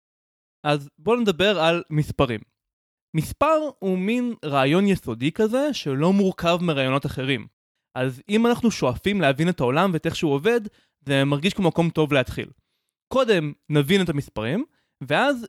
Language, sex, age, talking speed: Hebrew, male, 20-39, 145 wpm